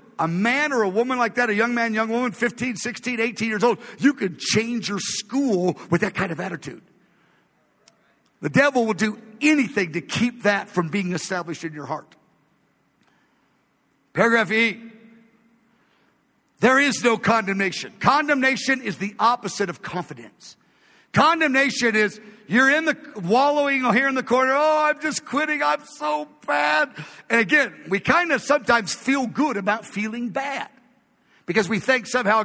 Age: 50-69